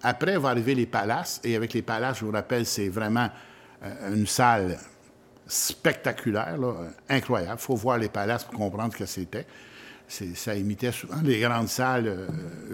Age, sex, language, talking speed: 60-79, male, French, 170 wpm